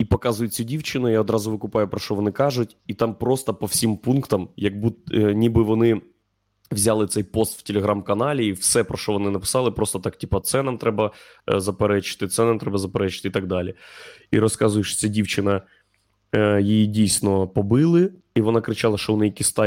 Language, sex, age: Ukrainian, male, 20-39